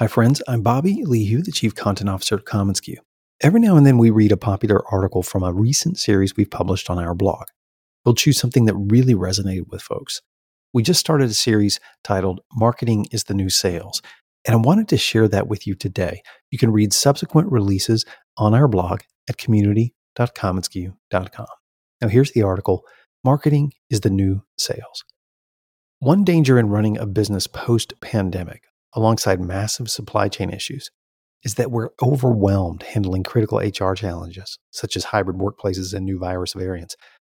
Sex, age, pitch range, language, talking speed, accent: male, 40-59, 95-125 Hz, English, 170 wpm, American